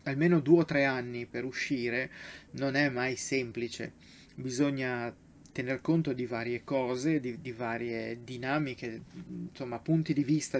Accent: native